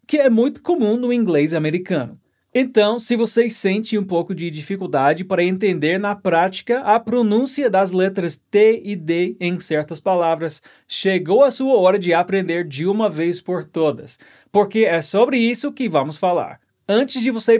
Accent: Brazilian